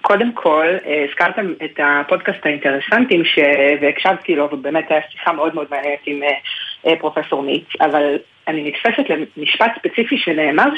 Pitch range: 155-200 Hz